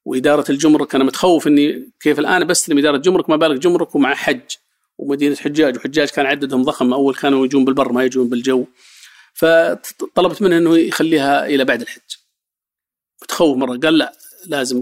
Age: 50-69